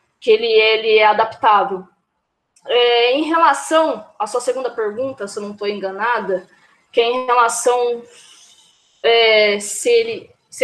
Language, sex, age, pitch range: Portuguese, female, 20-39, 230-315 Hz